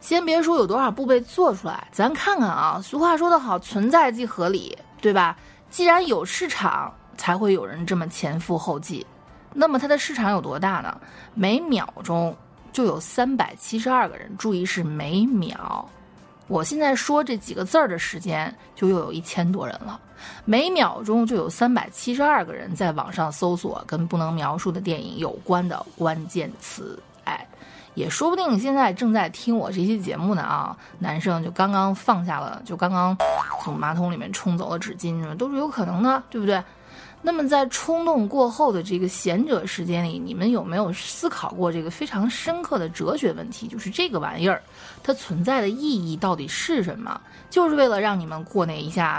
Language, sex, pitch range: Chinese, female, 175-255 Hz